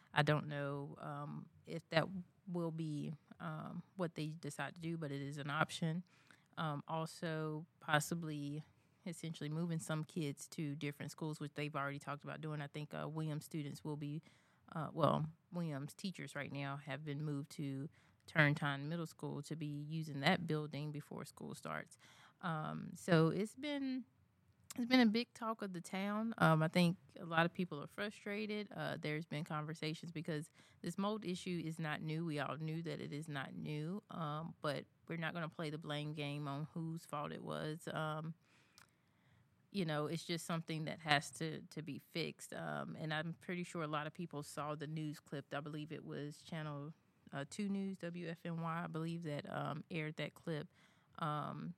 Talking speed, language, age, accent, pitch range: 185 wpm, English, 30-49, American, 150-170 Hz